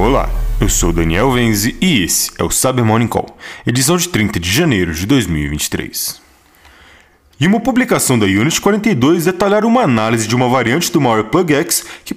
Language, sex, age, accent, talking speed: Portuguese, male, 20-39, Brazilian, 180 wpm